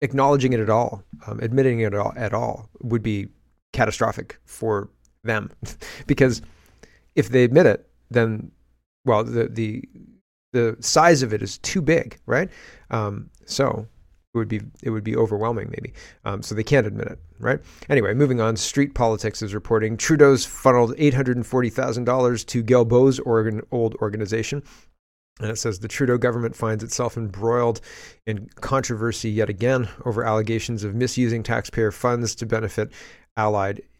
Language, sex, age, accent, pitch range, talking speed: English, male, 40-59, American, 105-120 Hz, 160 wpm